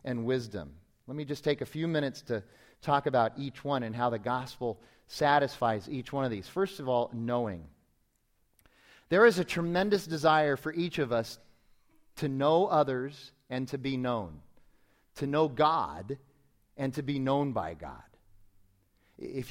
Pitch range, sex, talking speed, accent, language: 120-155 Hz, male, 165 wpm, American, English